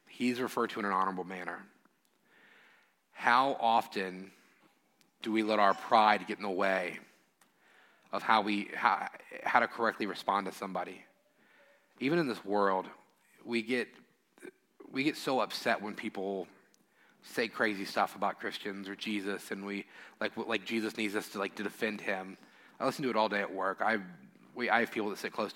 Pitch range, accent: 95-110 Hz, American